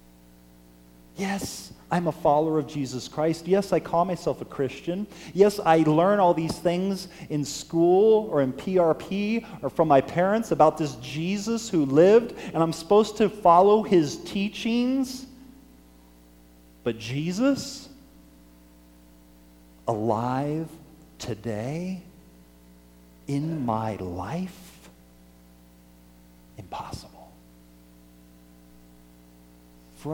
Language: English